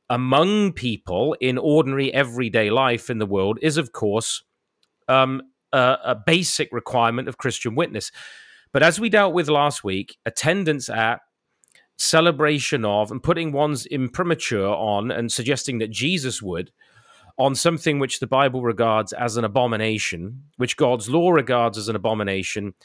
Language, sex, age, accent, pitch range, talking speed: English, male, 30-49, British, 120-160 Hz, 150 wpm